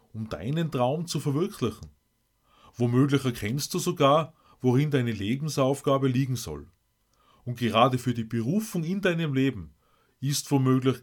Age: 30-49